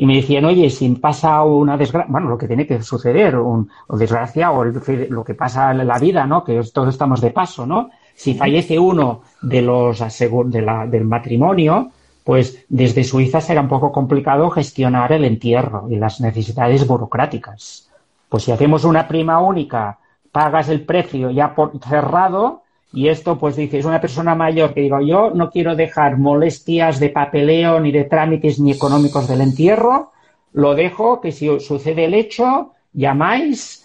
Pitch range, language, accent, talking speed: 125-160 Hz, Spanish, Spanish, 175 wpm